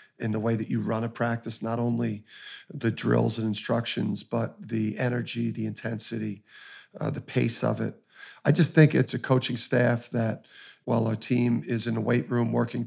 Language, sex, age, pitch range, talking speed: English, male, 40-59, 115-125 Hz, 190 wpm